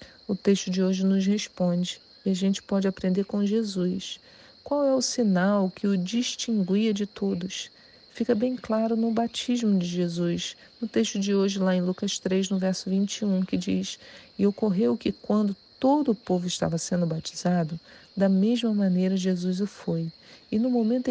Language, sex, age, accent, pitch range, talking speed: Portuguese, female, 40-59, Brazilian, 190-235 Hz, 175 wpm